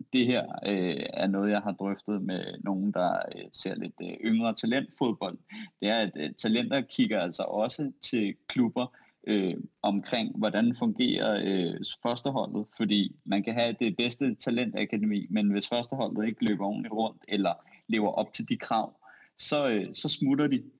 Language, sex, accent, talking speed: Danish, male, native, 165 wpm